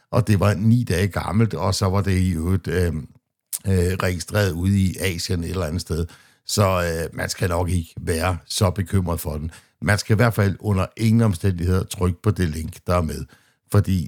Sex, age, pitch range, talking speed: male, 60-79, 85-105 Hz, 215 wpm